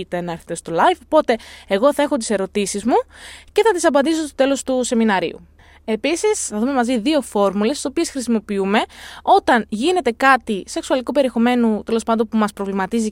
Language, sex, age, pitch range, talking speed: Greek, female, 20-39, 210-285 Hz, 180 wpm